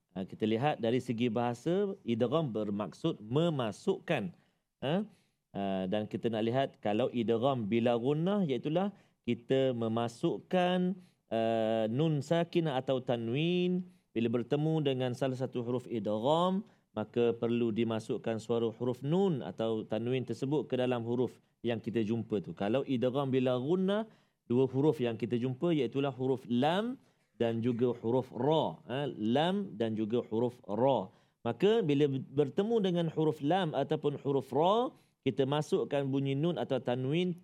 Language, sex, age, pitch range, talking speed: Malayalam, male, 40-59, 120-175 Hz, 140 wpm